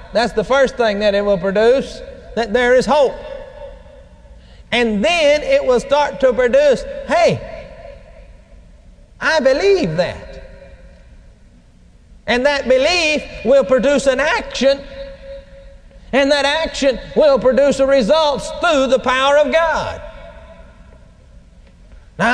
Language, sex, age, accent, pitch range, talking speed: English, male, 40-59, American, 170-280 Hz, 115 wpm